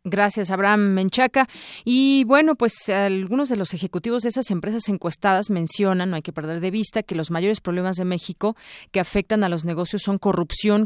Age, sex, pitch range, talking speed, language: 30-49, female, 180-220 Hz, 190 wpm, Spanish